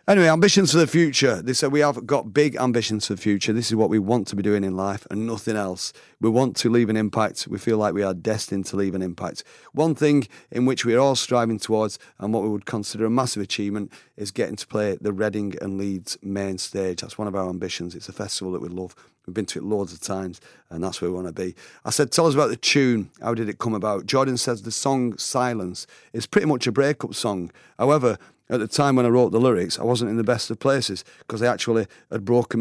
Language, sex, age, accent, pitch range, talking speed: English, male, 30-49, British, 100-130 Hz, 260 wpm